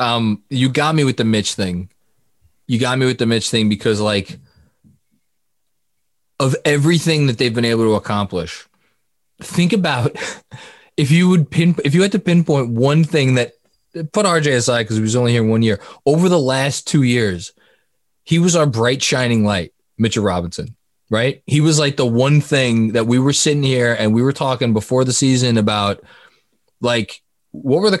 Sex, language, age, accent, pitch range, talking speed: male, English, 20-39, American, 115-155 Hz, 185 wpm